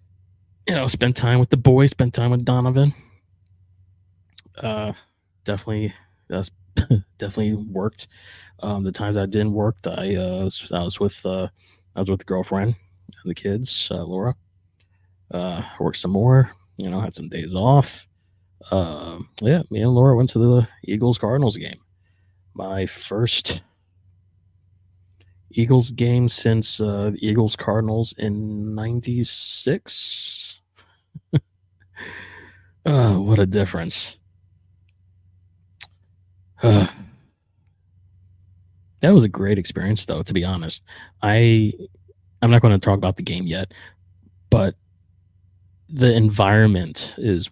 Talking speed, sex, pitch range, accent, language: 125 wpm, male, 95-110 Hz, American, English